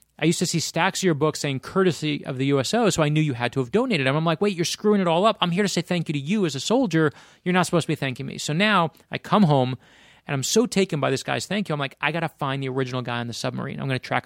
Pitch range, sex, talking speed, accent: 130-165 Hz, male, 330 wpm, American